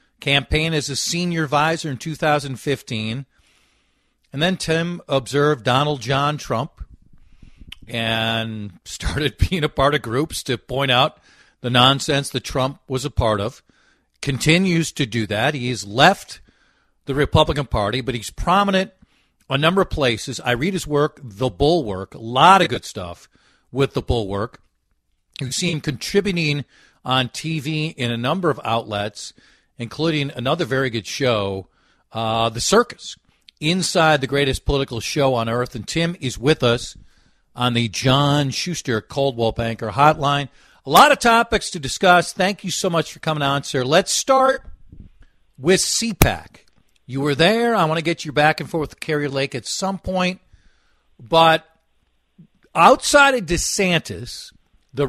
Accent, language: American, English